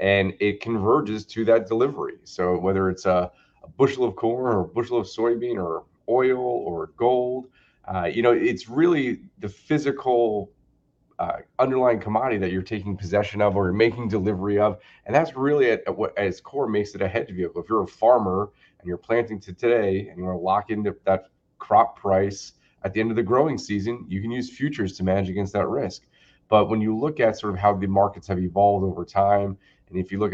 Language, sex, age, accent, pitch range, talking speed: English, male, 30-49, American, 95-115 Hz, 215 wpm